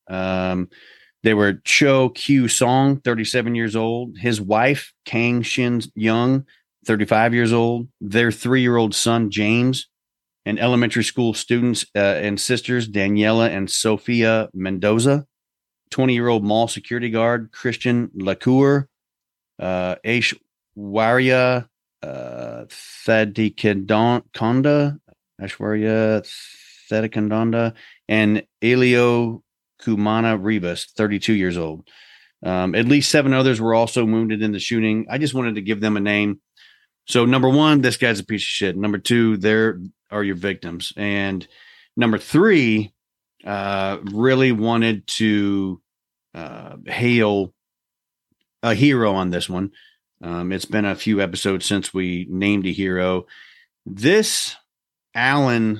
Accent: American